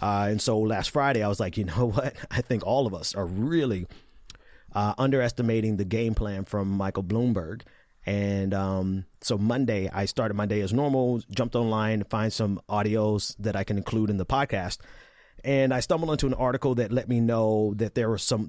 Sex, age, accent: male, 30-49, American